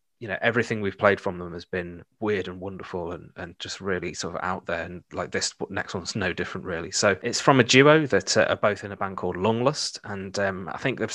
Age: 20-39